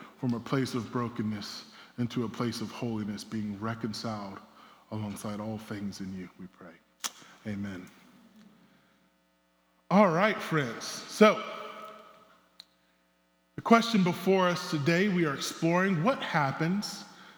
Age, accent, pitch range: 20-39, American, 130-195 Hz